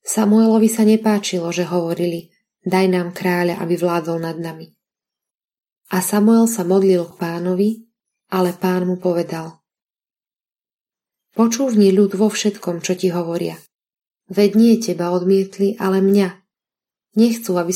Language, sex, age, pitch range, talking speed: Slovak, female, 20-39, 180-200 Hz, 125 wpm